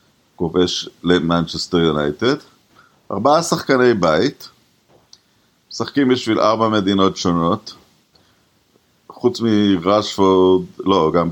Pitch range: 90-115 Hz